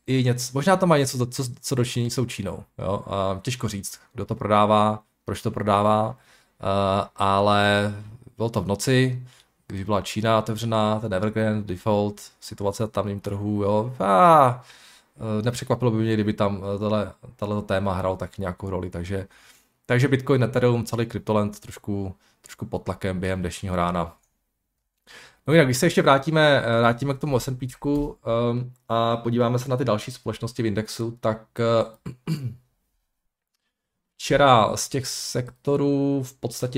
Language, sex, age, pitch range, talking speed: Czech, male, 20-39, 105-125 Hz, 140 wpm